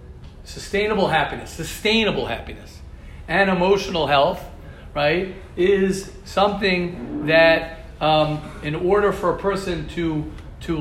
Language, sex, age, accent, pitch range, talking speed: English, male, 40-59, American, 145-180 Hz, 105 wpm